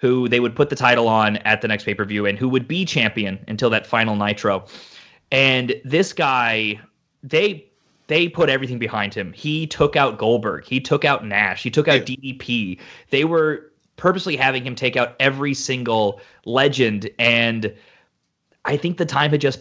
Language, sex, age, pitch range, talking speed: English, male, 20-39, 110-140 Hz, 180 wpm